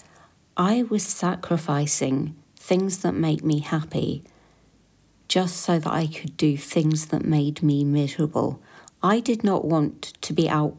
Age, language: 40-59, English